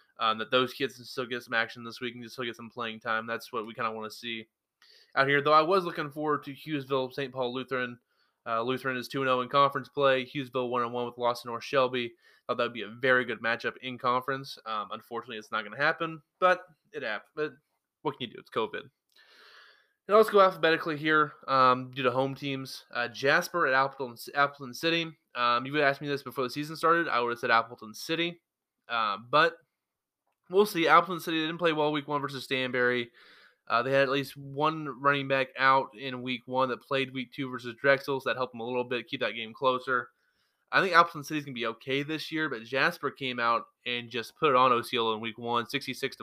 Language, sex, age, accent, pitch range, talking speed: English, male, 20-39, American, 120-145 Hz, 230 wpm